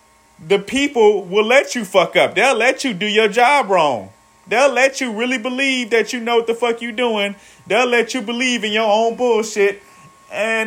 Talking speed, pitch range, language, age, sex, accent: 200 wpm, 155-220 Hz, English, 30-49, male, American